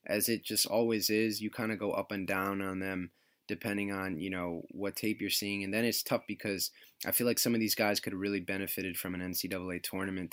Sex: male